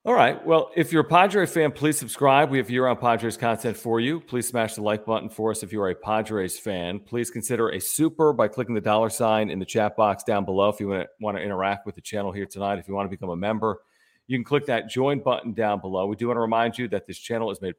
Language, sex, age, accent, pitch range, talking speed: English, male, 40-59, American, 105-125 Hz, 275 wpm